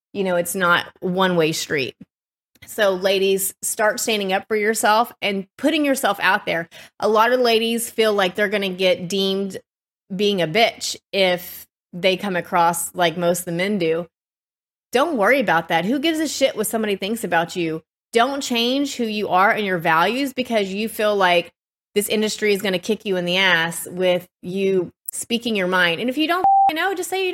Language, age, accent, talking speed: English, 20-39, American, 200 wpm